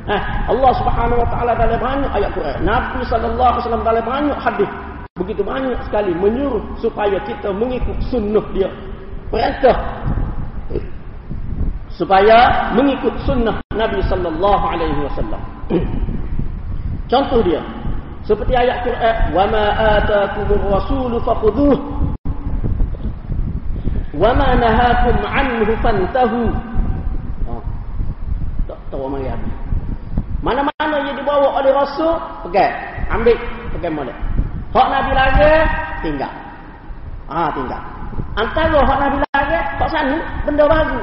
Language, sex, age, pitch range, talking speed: Malay, male, 40-59, 200-280 Hz, 110 wpm